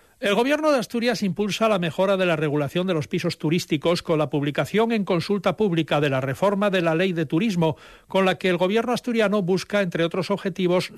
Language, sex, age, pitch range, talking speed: Spanish, male, 60-79, 160-200 Hz, 210 wpm